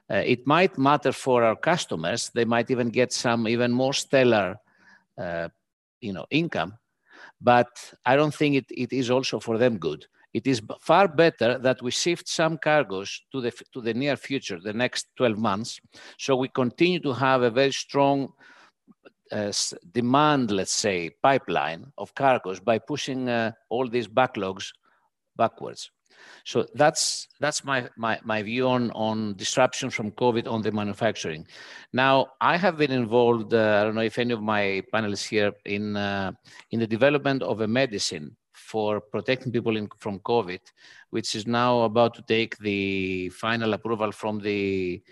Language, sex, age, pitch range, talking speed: English, male, 50-69, 105-130 Hz, 165 wpm